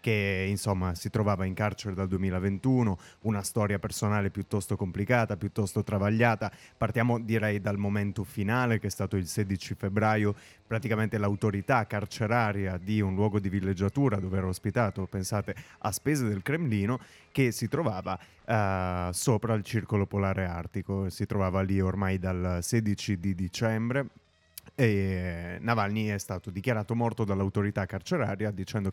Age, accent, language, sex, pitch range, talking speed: 30-49, native, Italian, male, 95-110 Hz, 140 wpm